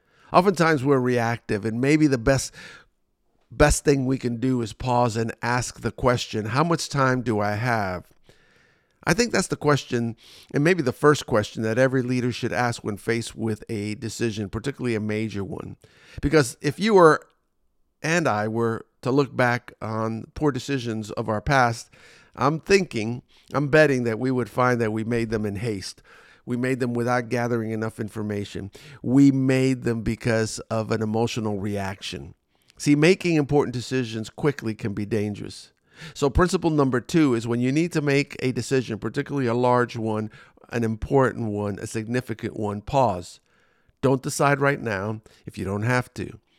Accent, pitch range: American, 110-135 Hz